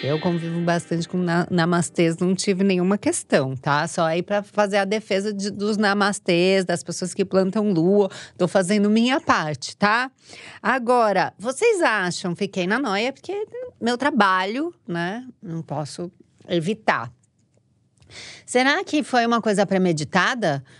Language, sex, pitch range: Portuguese, female, 150-215 Hz